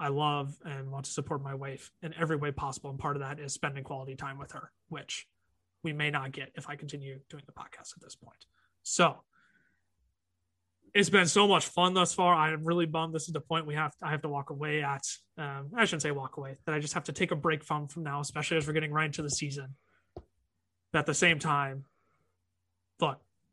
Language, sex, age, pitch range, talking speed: English, male, 20-39, 130-155 Hz, 230 wpm